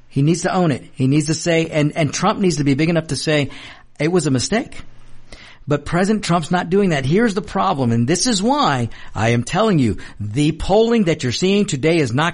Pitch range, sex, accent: 120-165 Hz, male, American